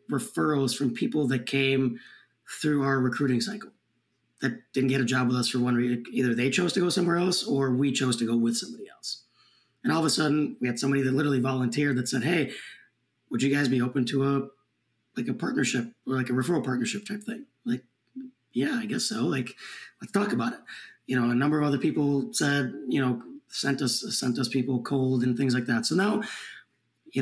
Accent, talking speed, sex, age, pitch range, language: American, 215 wpm, male, 30-49, 125-145 Hz, English